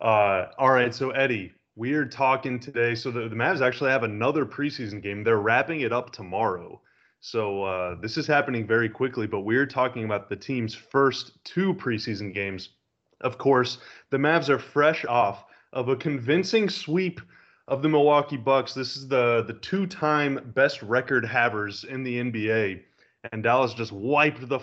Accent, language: American, English